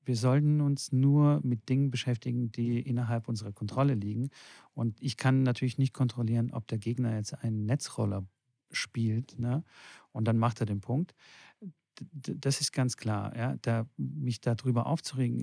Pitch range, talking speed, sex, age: 115-135 Hz, 165 wpm, male, 40-59